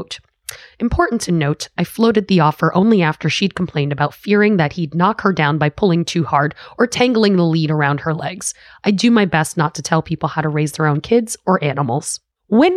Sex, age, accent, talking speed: female, 20-39, American, 215 wpm